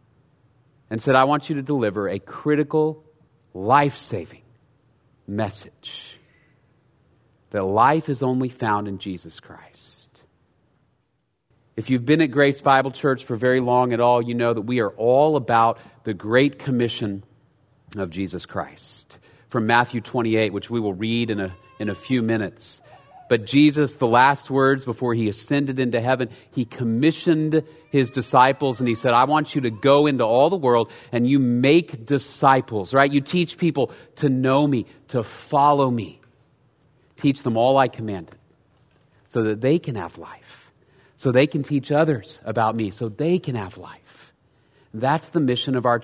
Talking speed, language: 165 wpm, English